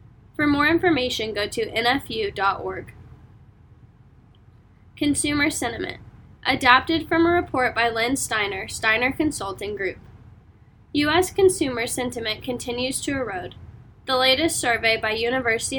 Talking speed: 110 wpm